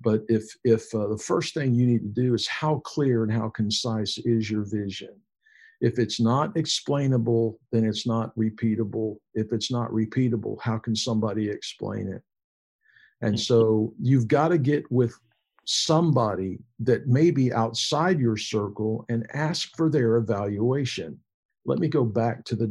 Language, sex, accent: English, male, American